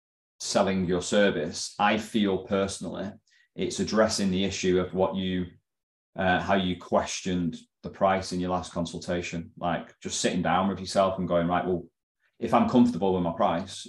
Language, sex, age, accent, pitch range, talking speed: English, male, 30-49, British, 90-115 Hz, 170 wpm